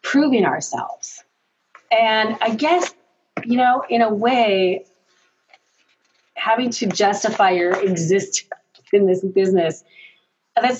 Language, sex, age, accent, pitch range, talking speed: English, female, 30-49, American, 175-215 Hz, 105 wpm